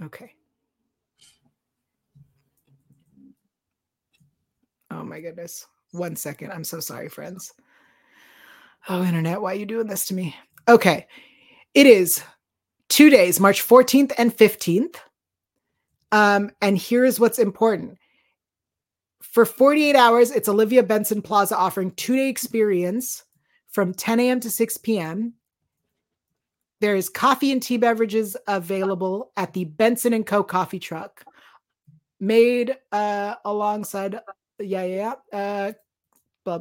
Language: English